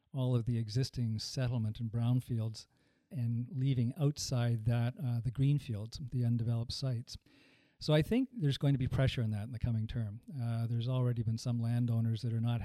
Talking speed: 190 wpm